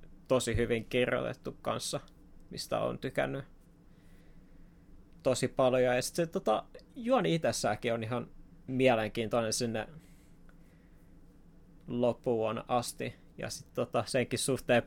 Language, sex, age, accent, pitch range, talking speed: Finnish, male, 20-39, native, 120-135 Hz, 105 wpm